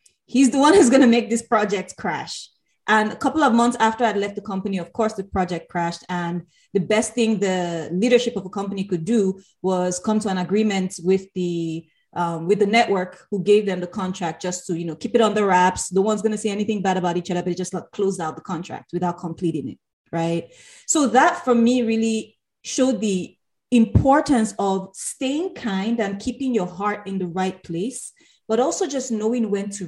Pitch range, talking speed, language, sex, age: 180-235 Hz, 215 wpm, English, female, 20-39